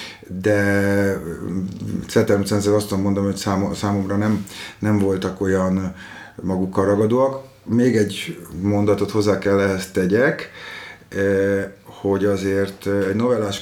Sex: male